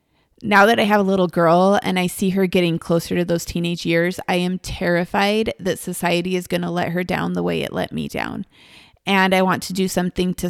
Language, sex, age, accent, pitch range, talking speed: English, female, 20-39, American, 155-195 Hz, 235 wpm